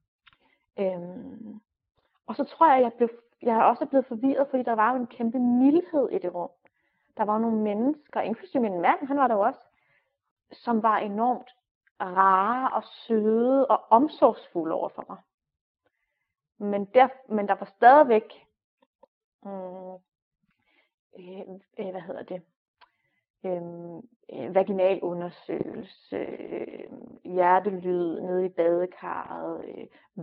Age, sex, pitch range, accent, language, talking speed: 30-49, female, 185-245 Hz, native, Danish, 125 wpm